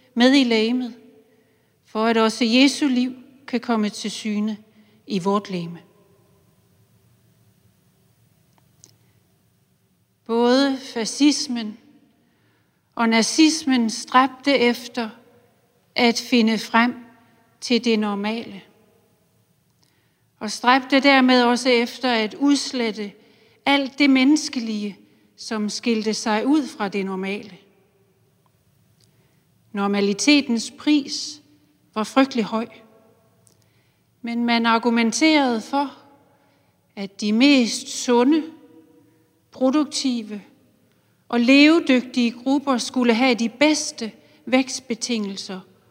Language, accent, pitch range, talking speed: Danish, native, 210-255 Hz, 85 wpm